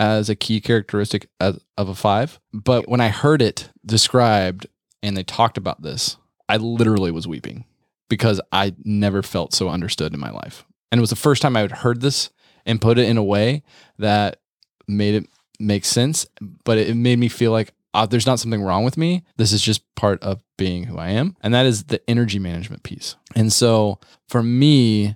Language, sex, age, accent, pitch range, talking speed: English, male, 20-39, American, 95-115 Hz, 205 wpm